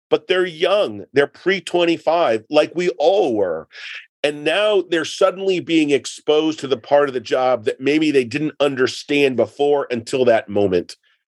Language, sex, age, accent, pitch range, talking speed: English, male, 40-59, American, 125-165 Hz, 160 wpm